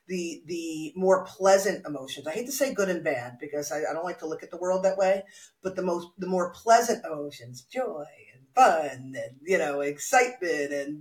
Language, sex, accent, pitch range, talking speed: English, female, American, 145-195 Hz, 215 wpm